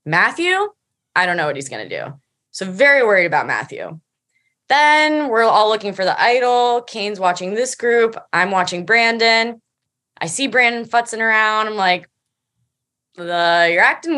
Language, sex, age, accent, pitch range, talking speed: English, female, 20-39, American, 200-270 Hz, 160 wpm